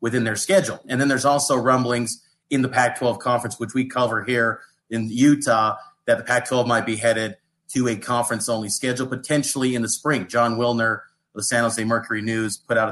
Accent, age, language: American, 30-49, English